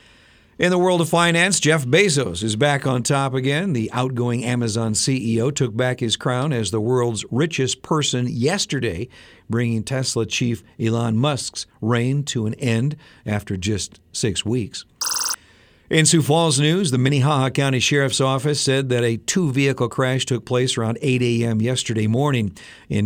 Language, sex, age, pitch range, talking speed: Persian, male, 50-69, 110-140 Hz, 160 wpm